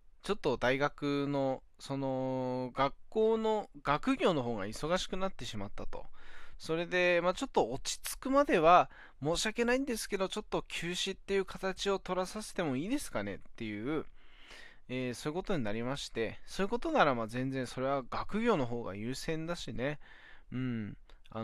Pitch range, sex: 125-190 Hz, male